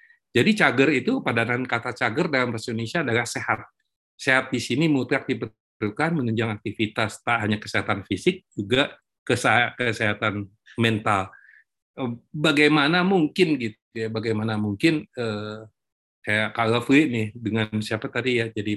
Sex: male